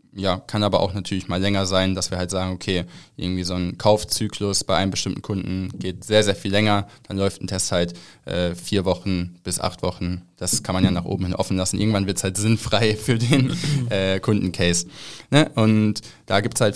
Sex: male